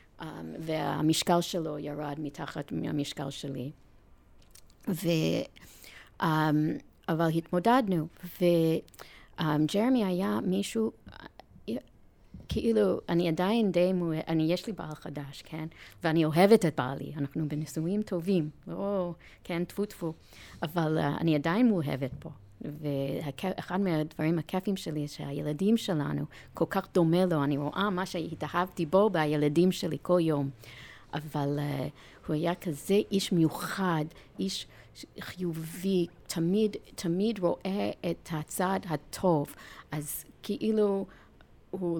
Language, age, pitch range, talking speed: Hebrew, 40-59, 150-185 Hz, 115 wpm